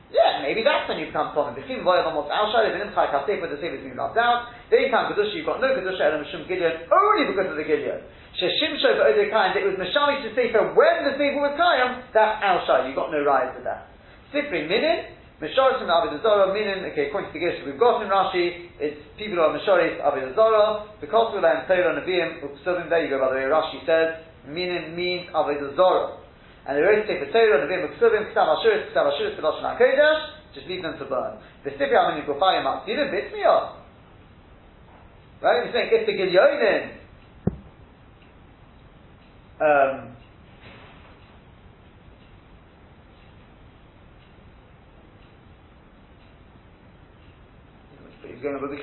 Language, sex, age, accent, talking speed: English, male, 40-59, British, 150 wpm